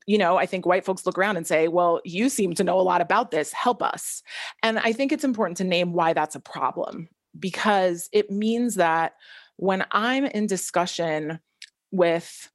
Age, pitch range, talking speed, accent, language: 30-49, 170-220 Hz, 195 wpm, American, English